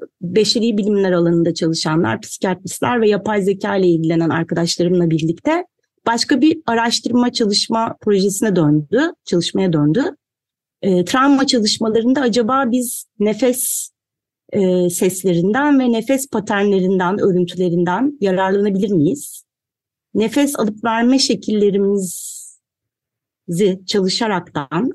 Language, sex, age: Turkish, female, 40-59